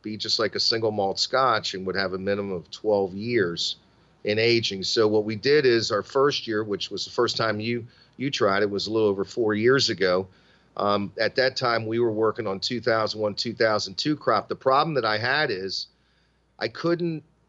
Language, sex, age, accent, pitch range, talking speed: English, male, 40-59, American, 100-125 Hz, 205 wpm